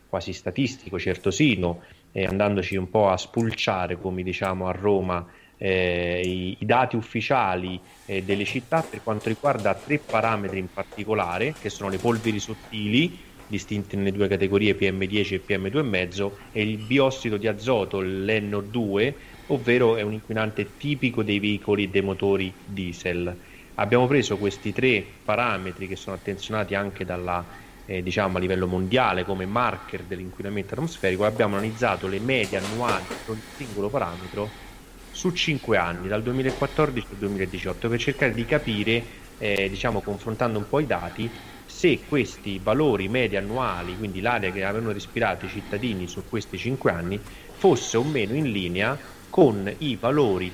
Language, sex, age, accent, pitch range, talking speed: Italian, male, 30-49, native, 95-115 Hz, 150 wpm